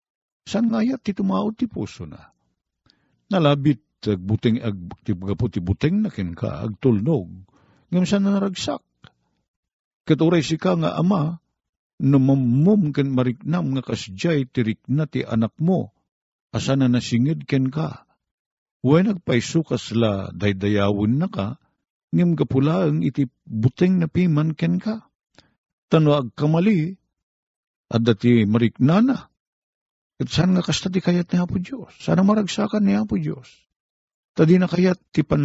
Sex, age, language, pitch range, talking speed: male, 50-69, Filipino, 120-180 Hz, 120 wpm